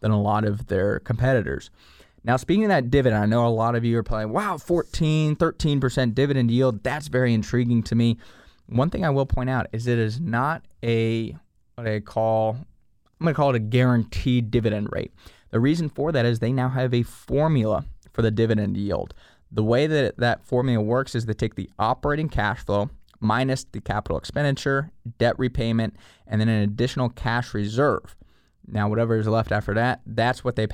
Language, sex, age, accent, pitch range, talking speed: English, male, 20-39, American, 105-125 Hz, 195 wpm